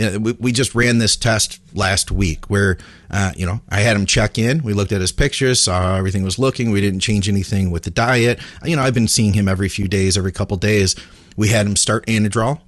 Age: 40-59